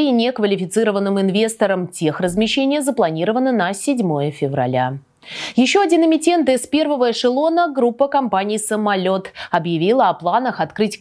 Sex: female